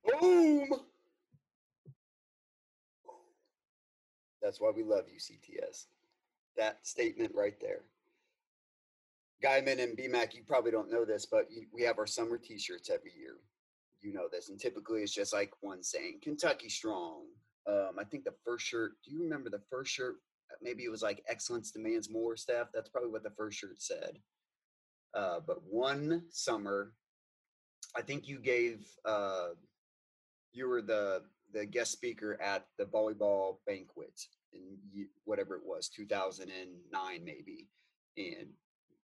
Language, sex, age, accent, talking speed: English, male, 30-49, American, 140 wpm